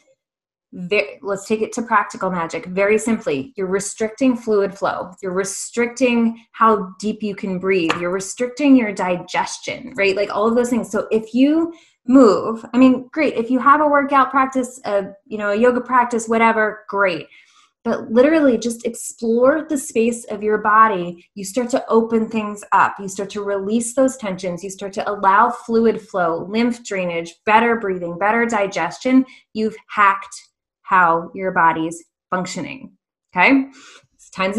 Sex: female